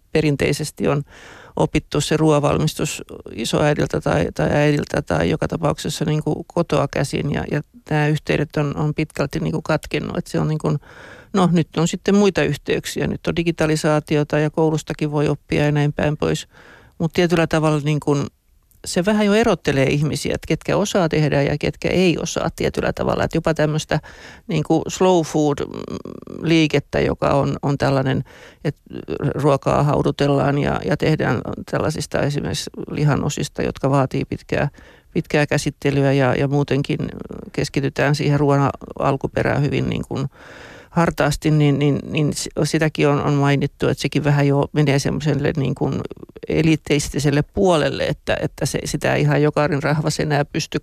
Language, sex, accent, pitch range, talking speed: Finnish, male, native, 140-155 Hz, 150 wpm